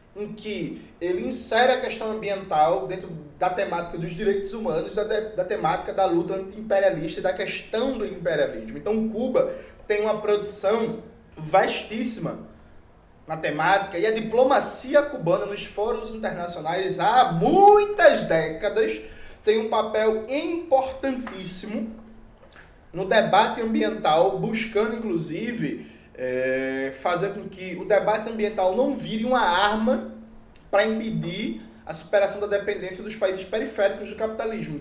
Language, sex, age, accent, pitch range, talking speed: Portuguese, male, 20-39, Brazilian, 180-225 Hz, 125 wpm